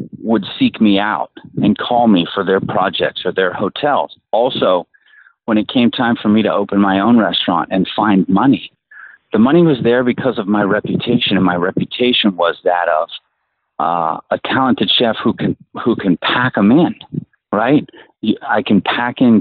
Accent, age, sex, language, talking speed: American, 40-59, male, English, 180 wpm